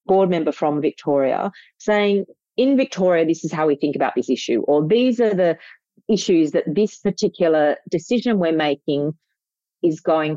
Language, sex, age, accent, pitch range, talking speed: English, female, 40-59, Australian, 145-200 Hz, 160 wpm